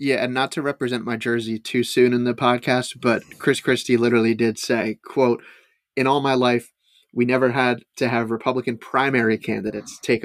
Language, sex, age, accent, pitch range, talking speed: English, male, 30-49, American, 115-135 Hz, 185 wpm